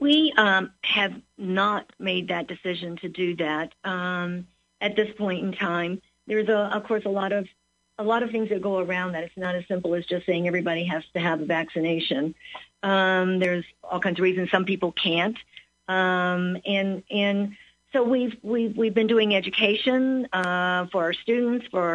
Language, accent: English, American